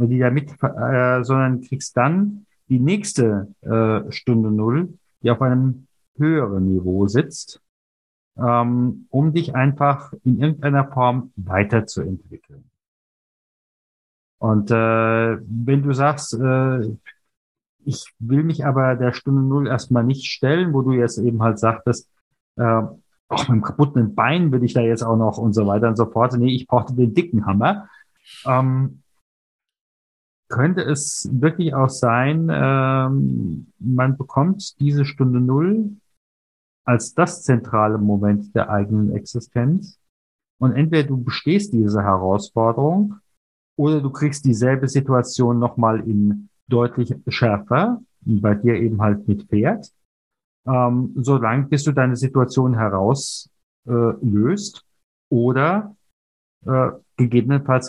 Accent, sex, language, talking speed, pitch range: German, male, German, 130 wpm, 110-140 Hz